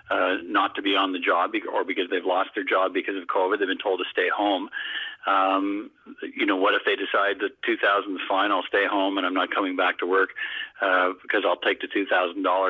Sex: male